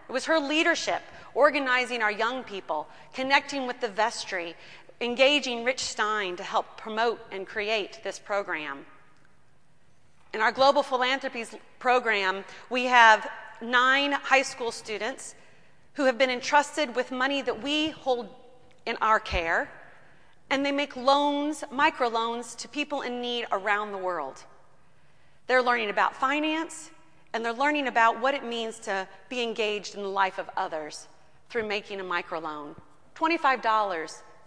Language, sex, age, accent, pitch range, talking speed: English, female, 30-49, American, 200-270 Hz, 140 wpm